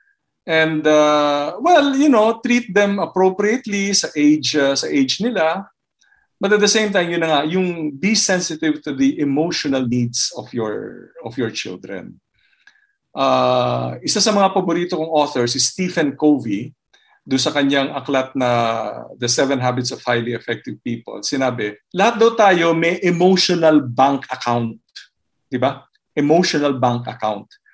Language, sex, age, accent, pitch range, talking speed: Filipino, male, 50-69, native, 130-185 Hz, 150 wpm